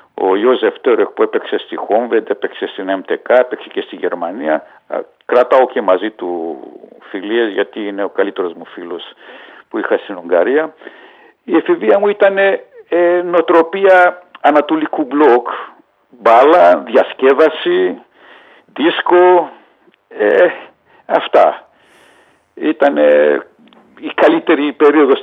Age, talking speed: 60-79, 105 wpm